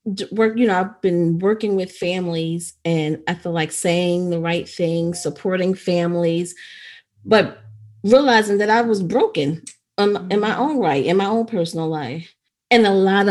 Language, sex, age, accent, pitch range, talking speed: English, female, 30-49, American, 160-195 Hz, 160 wpm